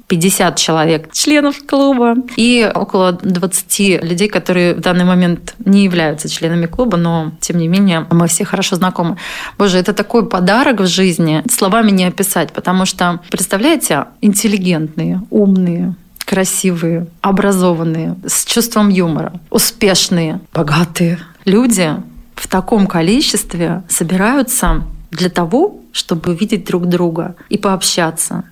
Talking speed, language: 120 wpm, Russian